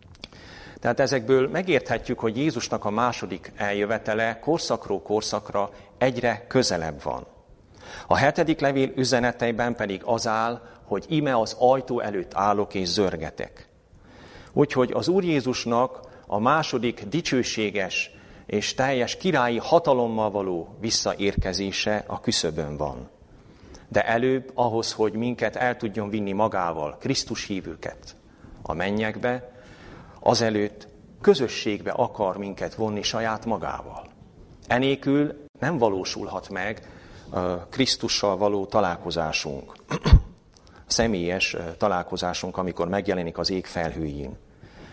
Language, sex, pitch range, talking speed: Hungarian, male, 100-125 Hz, 105 wpm